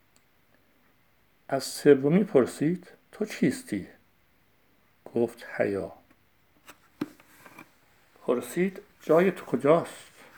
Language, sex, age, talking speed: Persian, male, 60-79, 65 wpm